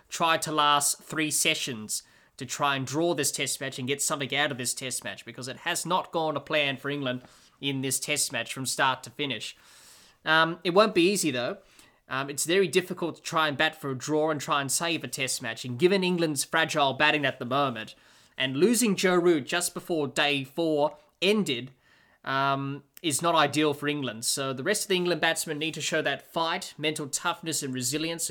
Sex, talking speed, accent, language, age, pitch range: male, 210 wpm, Australian, English, 20-39, 135-170 Hz